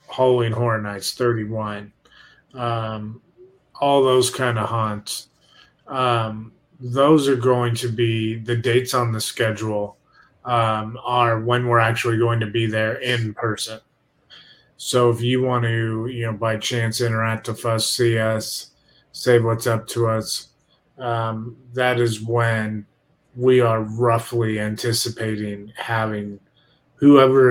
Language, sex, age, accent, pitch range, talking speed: English, male, 30-49, American, 110-125 Hz, 130 wpm